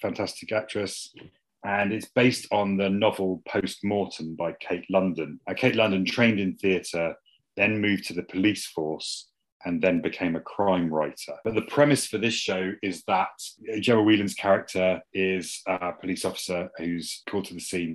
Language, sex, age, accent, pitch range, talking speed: English, male, 30-49, British, 85-100 Hz, 165 wpm